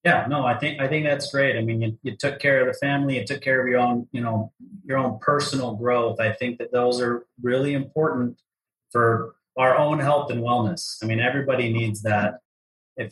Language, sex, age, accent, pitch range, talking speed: English, male, 30-49, American, 115-130 Hz, 220 wpm